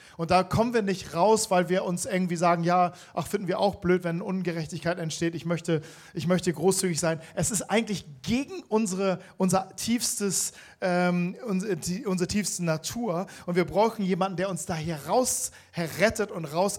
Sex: male